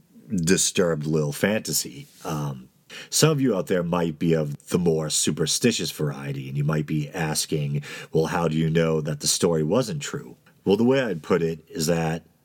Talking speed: 190 wpm